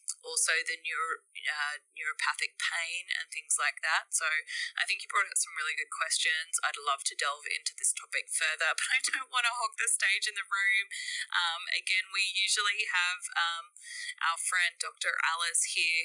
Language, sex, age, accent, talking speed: English, female, 20-39, Australian, 185 wpm